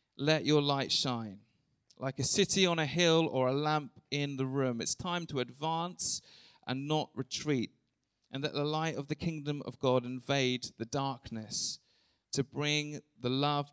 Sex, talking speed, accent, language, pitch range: male, 170 wpm, British, English, 120-155 Hz